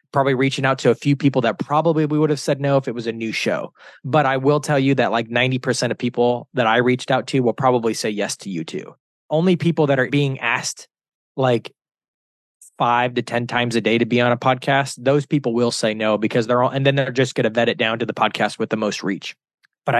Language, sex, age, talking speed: English, male, 20-39, 260 wpm